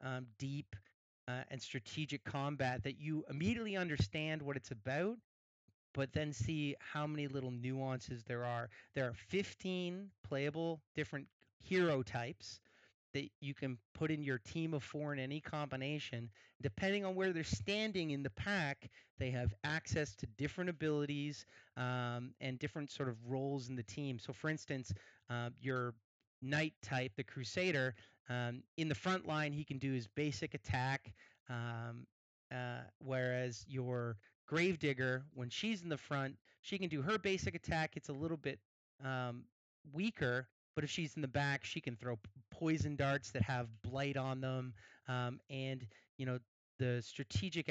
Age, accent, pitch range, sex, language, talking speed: 30-49, American, 125-150 Hz, male, English, 160 wpm